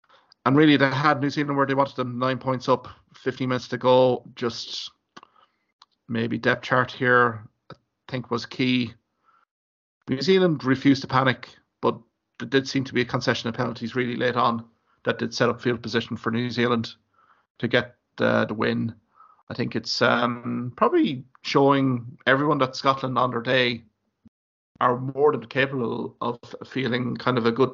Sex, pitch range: male, 120-130 Hz